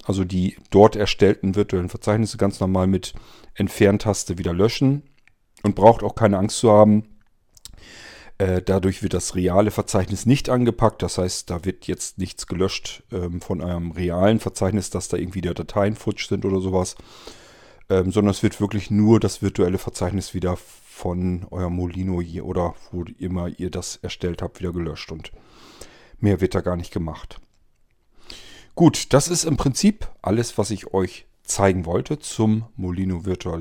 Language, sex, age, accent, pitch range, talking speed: German, male, 40-59, German, 90-105 Hz, 155 wpm